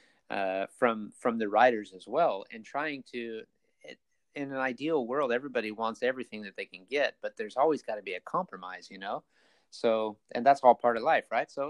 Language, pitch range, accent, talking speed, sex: English, 115-140 Hz, American, 205 wpm, male